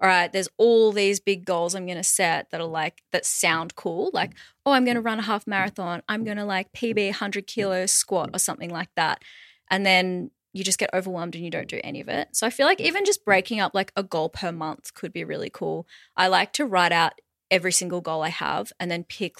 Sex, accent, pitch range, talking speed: female, Australian, 165-200 Hz, 250 wpm